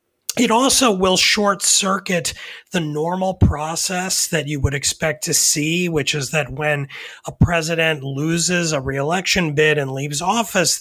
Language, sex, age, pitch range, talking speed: English, male, 30-49, 140-175 Hz, 145 wpm